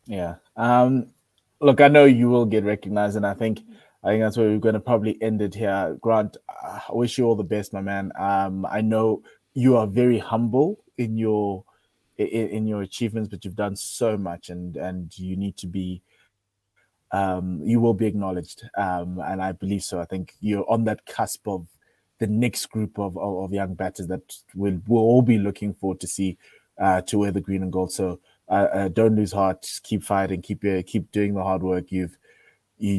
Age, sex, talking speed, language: 20-39, male, 205 wpm, English